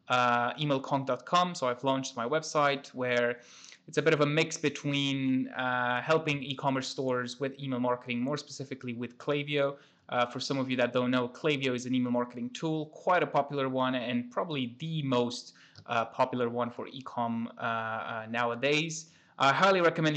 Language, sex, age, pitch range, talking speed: English, male, 20-39, 125-150 Hz, 175 wpm